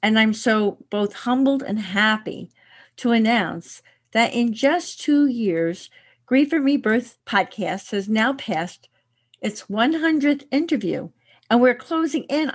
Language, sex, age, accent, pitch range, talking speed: English, female, 50-69, American, 180-250 Hz, 135 wpm